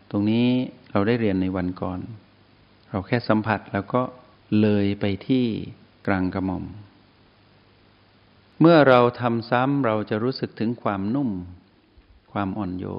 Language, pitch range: Thai, 95-110 Hz